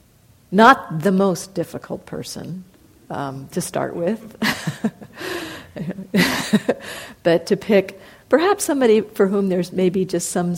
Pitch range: 150-195 Hz